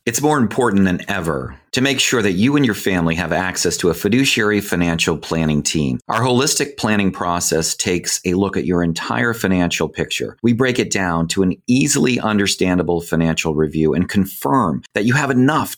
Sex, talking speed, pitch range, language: male, 185 wpm, 90-120 Hz, English